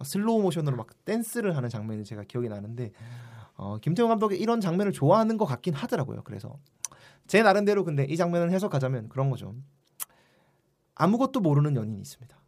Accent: native